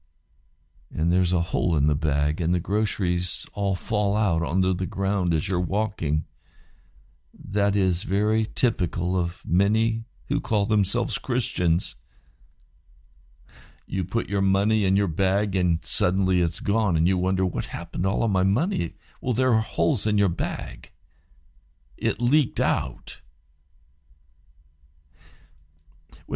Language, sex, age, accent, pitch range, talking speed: English, male, 60-79, American, 70-120 Hz, 140 wpm